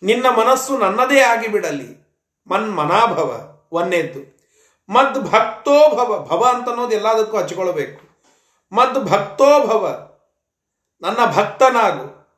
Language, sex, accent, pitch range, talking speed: Kannada, male, native, 180-250 Hz, 100 wpm